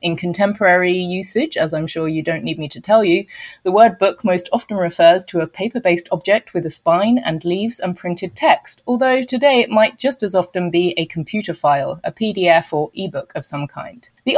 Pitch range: 175-245 Hz